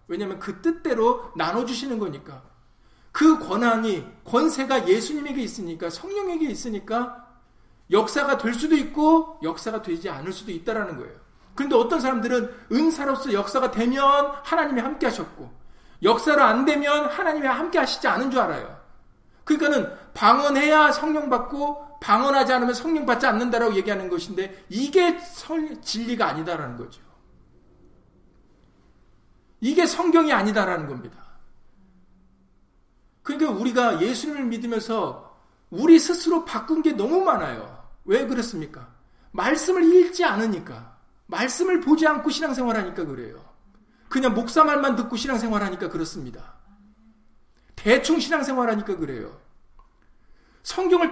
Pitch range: 210-310 Hz